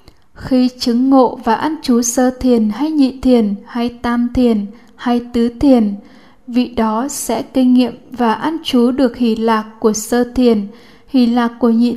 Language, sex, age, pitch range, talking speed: Vietnamese, female, 10-29, 230-260 Hz, 175 wpm